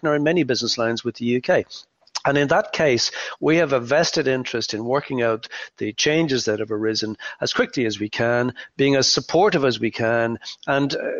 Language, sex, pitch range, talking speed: English, male, 115-145 Hz, 200 wpm